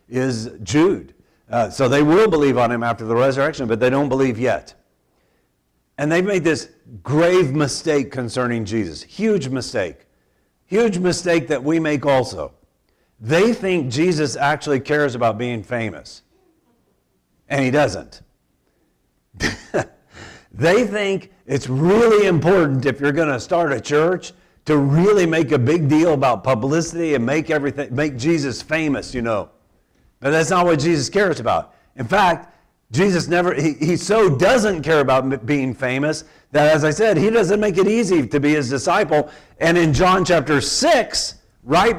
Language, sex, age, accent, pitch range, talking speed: English, male, 50-69, American, 135-180 Hz, 155 wpm